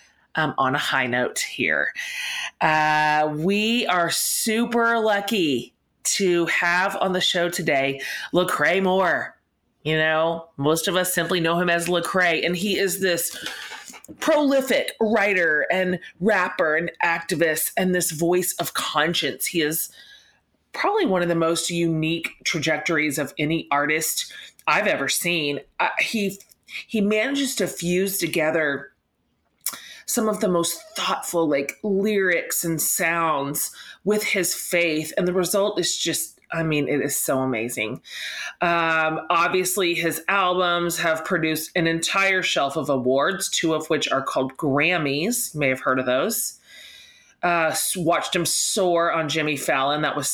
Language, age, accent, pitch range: English, 30-49, American, 155-195 Hz